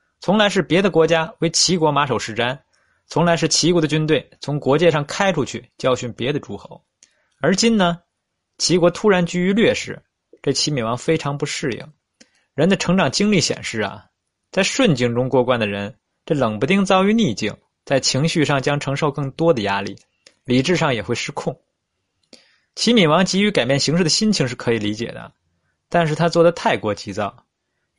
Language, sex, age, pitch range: Chinese, male, 20-39, 125-175 Hz